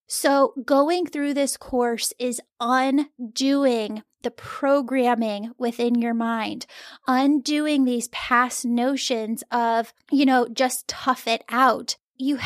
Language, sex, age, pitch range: English, female, 10-29, 240-280 Hz